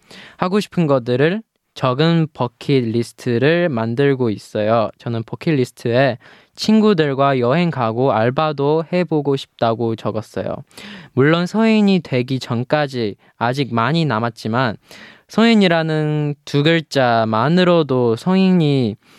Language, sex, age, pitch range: Korean, male, 20-39, 115-160 Hz